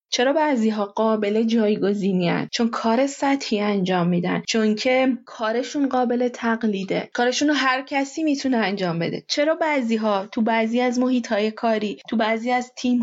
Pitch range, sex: 215-260 Hz, female